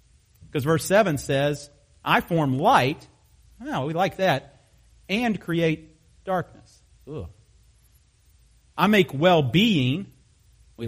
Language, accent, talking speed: English, American, 95 wpm